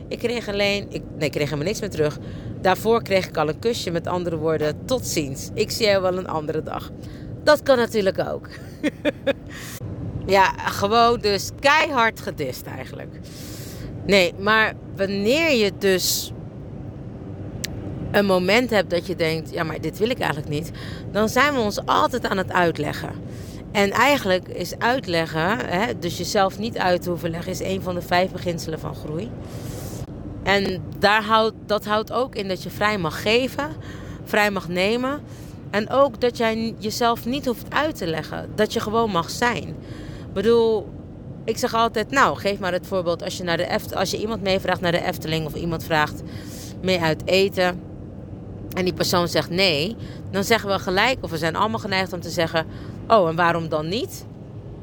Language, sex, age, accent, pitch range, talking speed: Dutch, female, 40-59, Dutch, 155-215 Hz, 180 wpm